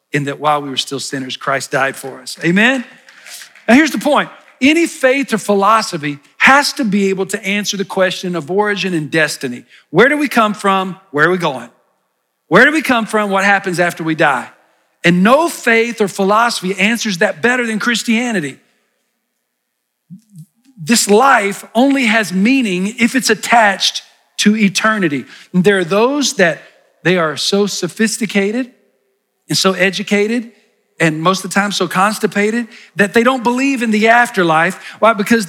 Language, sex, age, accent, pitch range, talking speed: English, male, 40-59, American, 185-240 Hz, 165 wpm